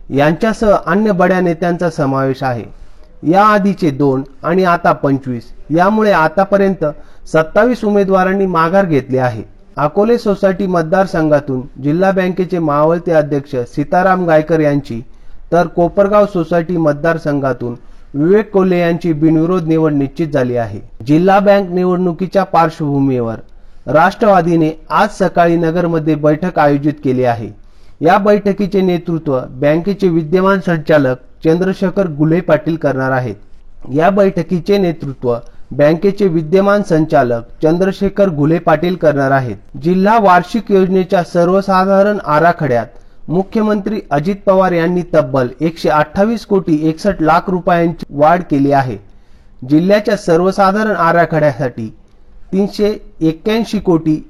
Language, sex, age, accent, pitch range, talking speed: Marathi, male, 40-59, native, 140-190 Hz, 110 wpm